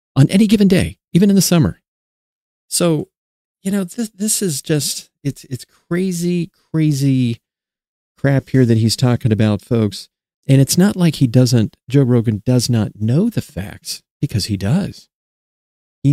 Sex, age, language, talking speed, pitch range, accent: male, 40-59, English, 160 wpm, 110-150 Hz, American